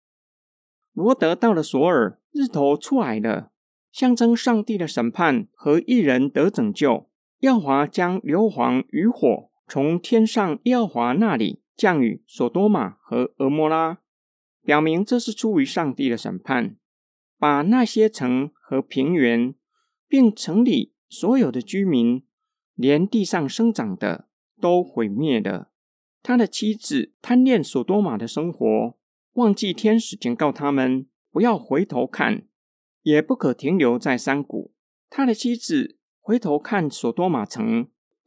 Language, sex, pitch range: Chinese, male, 140-235 Hz